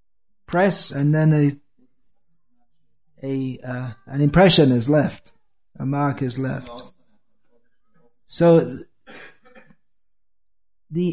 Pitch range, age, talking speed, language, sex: 130-165 Hz, 30-49, 85 wpm, English, male